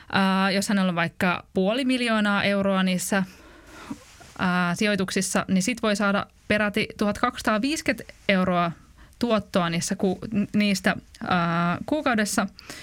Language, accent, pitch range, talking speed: Finnish, native, 190-230 Hz, 110 wpm